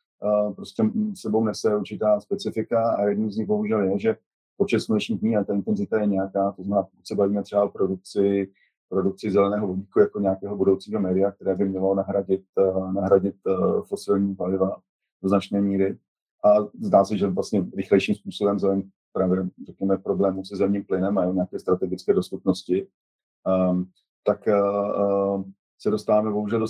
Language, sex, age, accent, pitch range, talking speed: Czech, male, 30-49, native, 95-100 Hz, 150 wpm